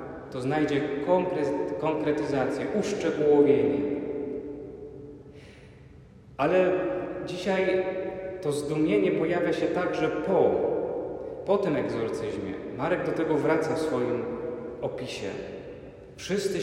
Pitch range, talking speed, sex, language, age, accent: 140-165 Hz, 85 wpm, male, Polish, 30-49, native